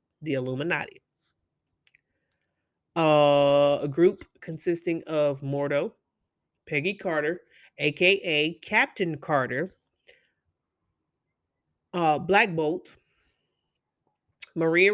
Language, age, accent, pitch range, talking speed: English, 30-49, American, 155-195 Hz, 70 wpm